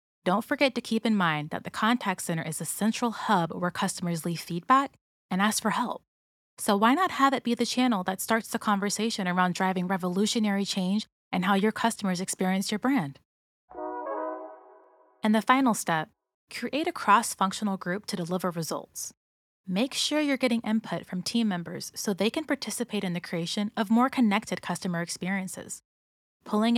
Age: 20-39